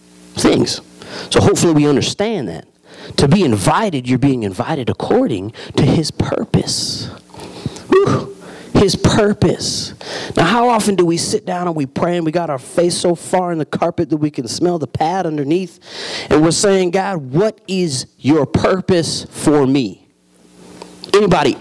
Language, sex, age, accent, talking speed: English, male, 30-49, American, 155 wpm